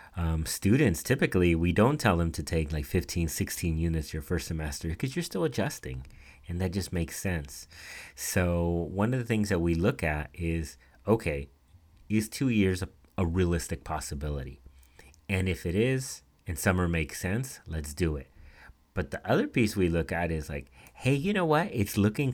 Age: 30-49